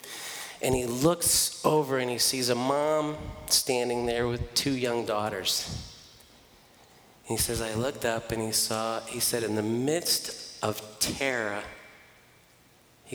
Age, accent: 40-59, American